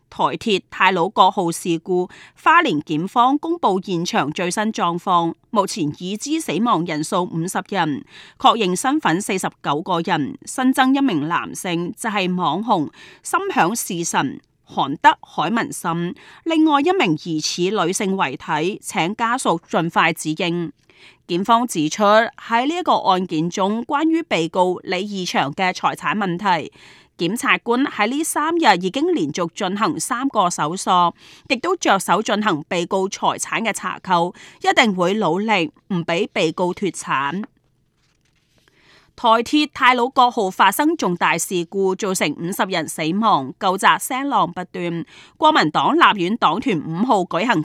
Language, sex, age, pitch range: Chinese, female, 30-49, 175-260 Hz